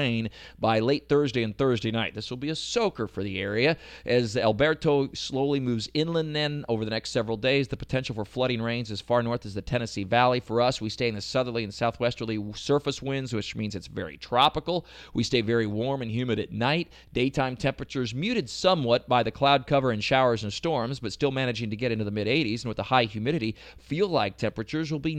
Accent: American